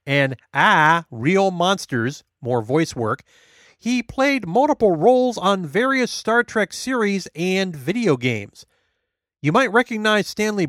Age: 40-59